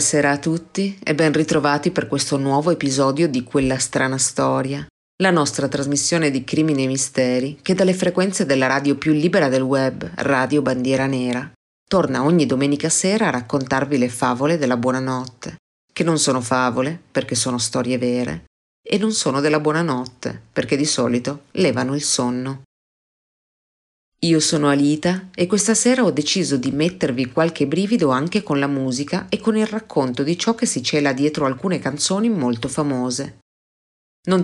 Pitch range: 130-160 Hz